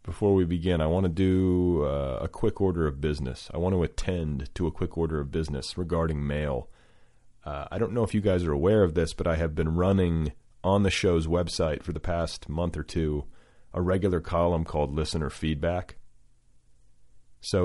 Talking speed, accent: 195 wpm, American